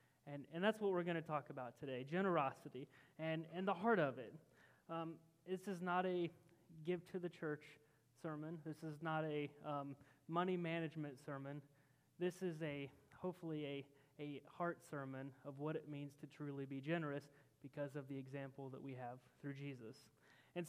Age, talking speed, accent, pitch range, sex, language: 30-49, 175 wpm, American, 140-165 Hz, male, English